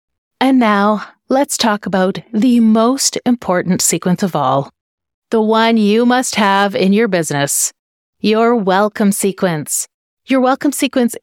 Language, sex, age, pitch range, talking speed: English, female, 30-49, 180-230 Hz, 135 wpm